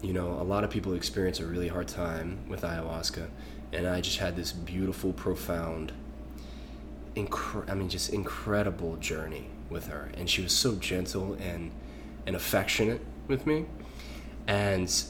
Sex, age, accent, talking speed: male, 20-39, American, 150 wpm